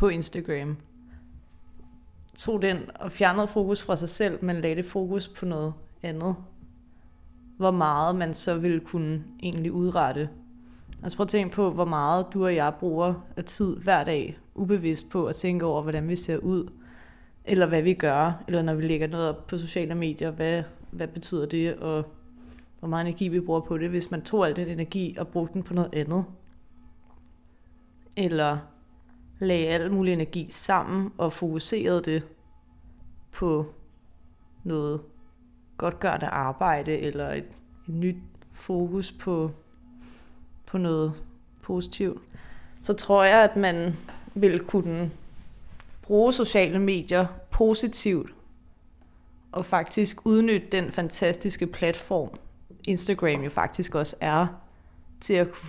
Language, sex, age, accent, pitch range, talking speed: Danish, female, 30-49, native, 135-180 Hz, 140 wpm